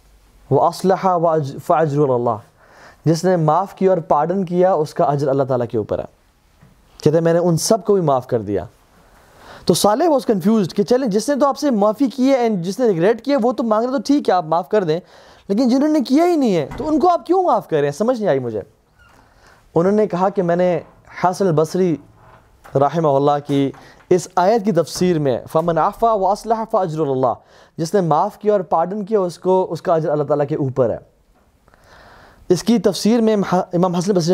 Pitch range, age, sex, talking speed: 155-220 Hz, 20-39, male, 150 wpm